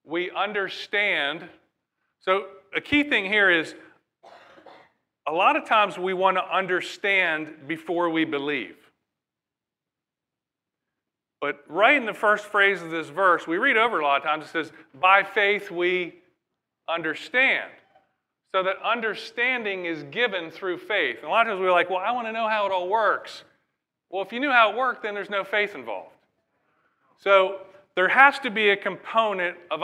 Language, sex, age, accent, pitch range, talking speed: English, male, 40-59, American, 170-210 Hz, 165 wpm